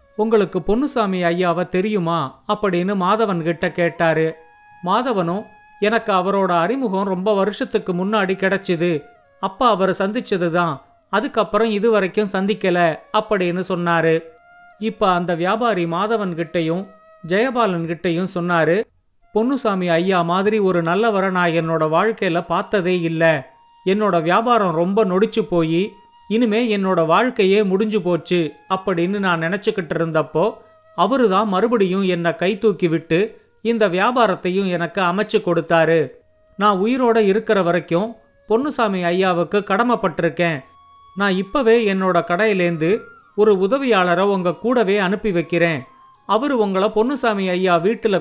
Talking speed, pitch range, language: 105 wpm, 175-220 Hz, Tamil